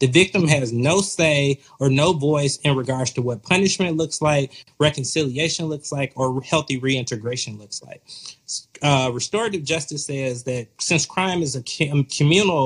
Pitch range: 130-160 Hz